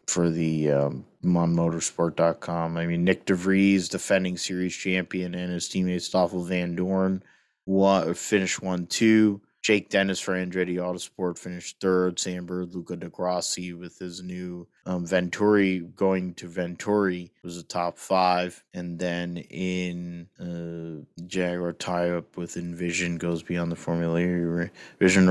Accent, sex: American, male